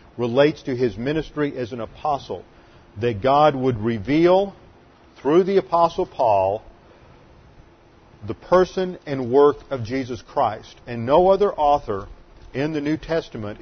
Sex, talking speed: male, 130 wpm